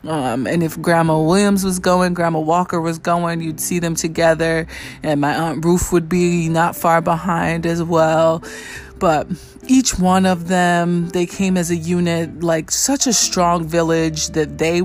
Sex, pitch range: female, 160-185 Hz